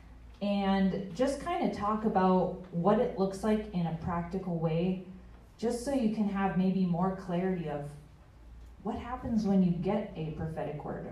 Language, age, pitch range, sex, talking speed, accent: English, 30-49, 165-200 Hz, female, 165 wpm, American